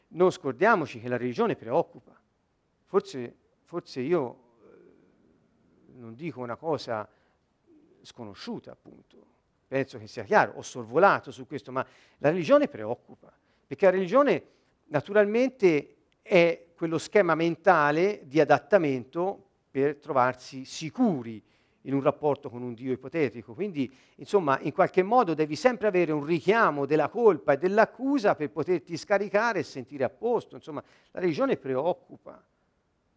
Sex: male